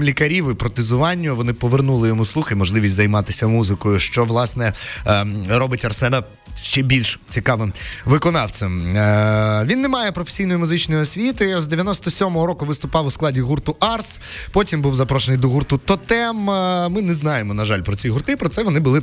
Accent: native